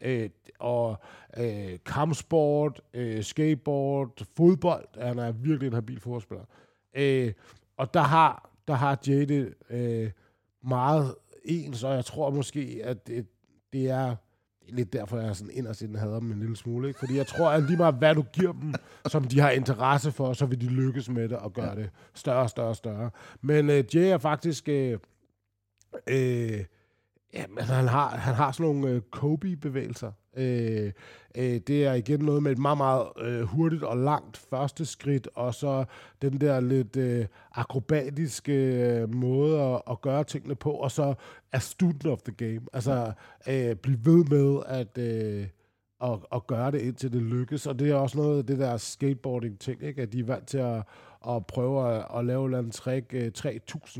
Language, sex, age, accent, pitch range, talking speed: Danish, male, 60-79, native, 115-140 Hz, 180 wpm